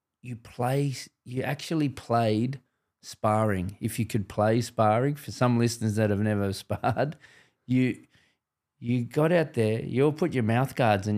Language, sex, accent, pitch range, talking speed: English, male, Australian, 105-130 Hz, 160 wpm